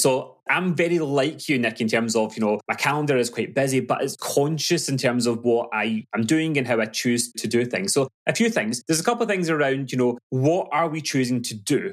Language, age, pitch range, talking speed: English, 20-39, 120-160 Hz, 255 wpm